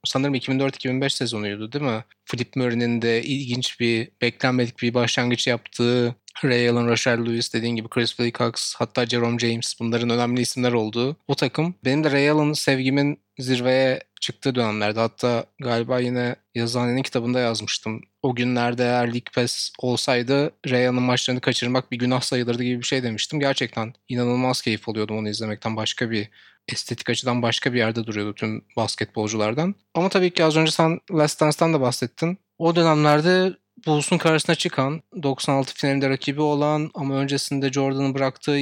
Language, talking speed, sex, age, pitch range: Turkish, 155 wpm, male, 30-49, 120-140 Hz